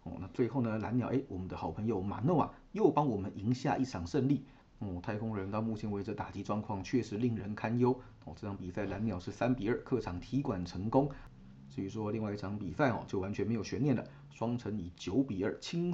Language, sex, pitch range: Chinese, male, 100-120 Hz